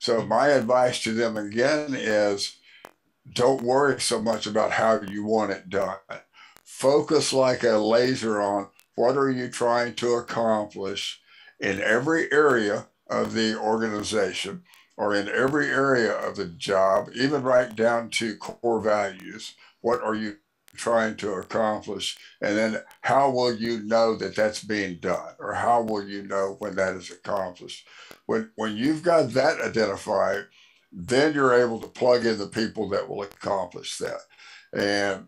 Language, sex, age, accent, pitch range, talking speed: English, male, 60-79, American, 105-125 Hz, 155 wpm